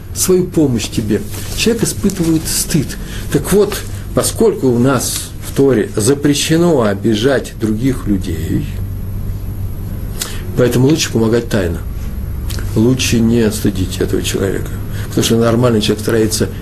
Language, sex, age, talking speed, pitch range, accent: Russian, male, 50-69, 110 wpm, 100-115 Hz, native